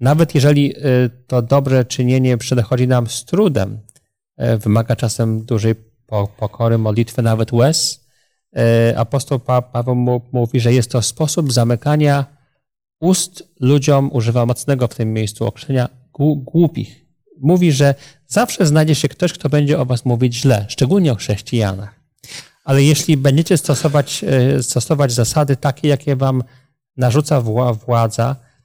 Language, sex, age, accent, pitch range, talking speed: Polish, male, 40-59, native, 120-145 Hz, 125 wpm